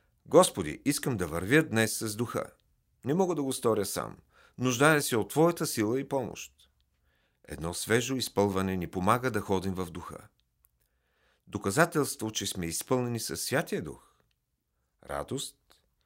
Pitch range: 90-135 Hz